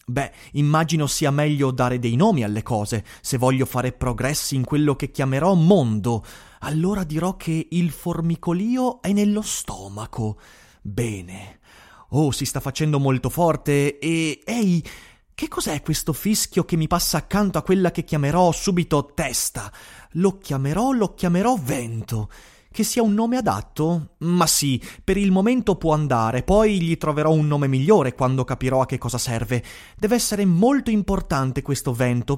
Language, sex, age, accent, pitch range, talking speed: Italian, male, 30-49, native, 130-190 Hz, 155 wpm